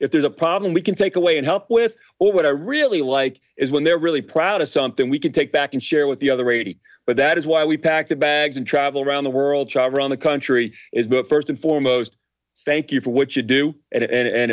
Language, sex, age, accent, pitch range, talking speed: English, male, 40-59, American, 135-185 Hz, 270 wpm